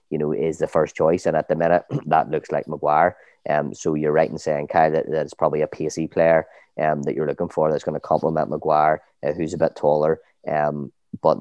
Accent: Irish